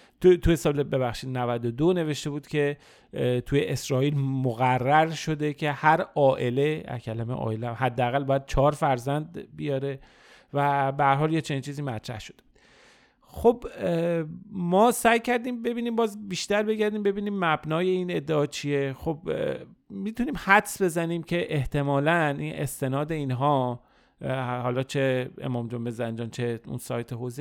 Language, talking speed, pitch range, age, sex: Persian, 135 wpm, 130-160 Hz, 40-59, male